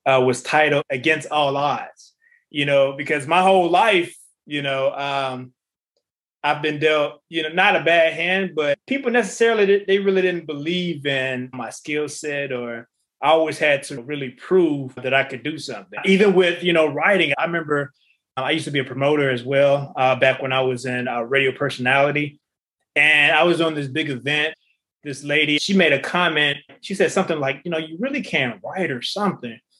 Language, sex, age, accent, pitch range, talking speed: English, male, 20-39, American, 135-165 Hz, 195 wpm